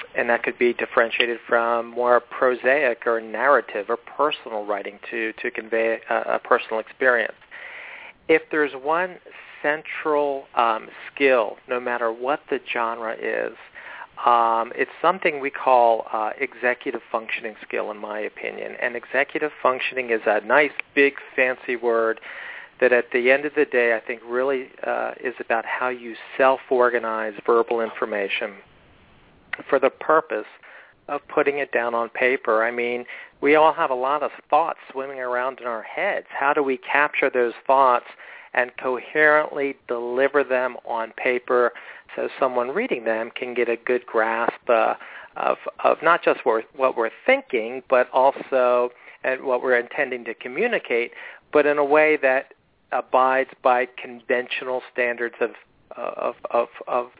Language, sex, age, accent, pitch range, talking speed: English, male, 40-59, American, 120-140 Hz, 150 wpm